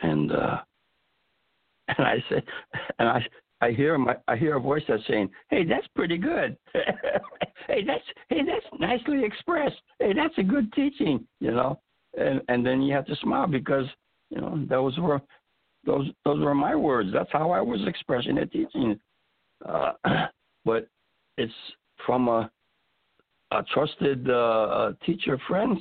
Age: 60-79